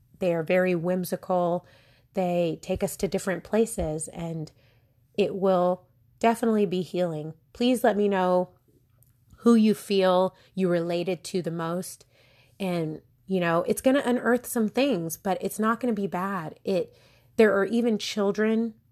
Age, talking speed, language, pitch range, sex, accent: 30-49, 155 wpm, English, 160-200 Hz, female, American